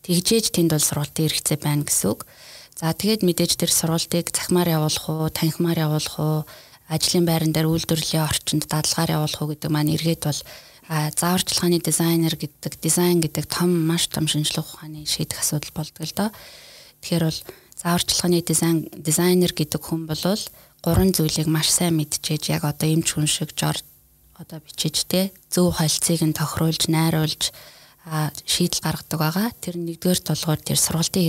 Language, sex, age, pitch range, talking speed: Russian, female, 20-39, 155-170 Hz, 130 wpm